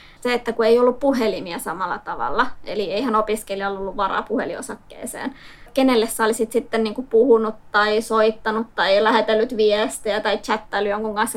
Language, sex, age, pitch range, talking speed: Finnish, female, 20-39, 215-245 Hz, 155 wpm